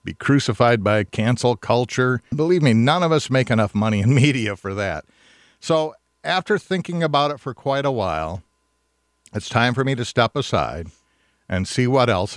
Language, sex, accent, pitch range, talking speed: English, male, American, 95-125 Hz, 180 wpm